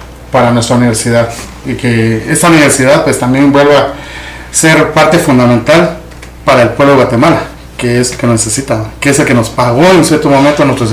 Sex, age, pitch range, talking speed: male, 30-49, 115-155 Hz, 190 wpm